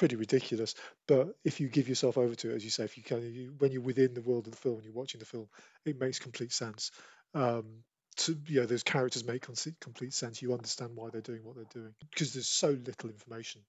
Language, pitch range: English, 115-130 Hz